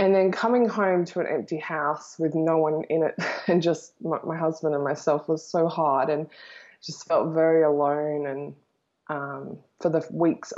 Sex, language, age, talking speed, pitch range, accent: female, English, 20-39, 185 wpm, 155-180 Hz, Australian